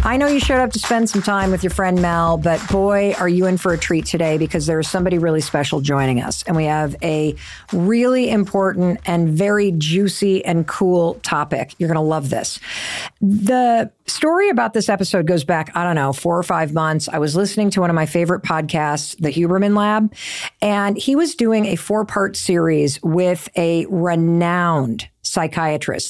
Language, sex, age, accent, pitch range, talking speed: English, female, 50-69, American, 165-210 Hz, 195 wpm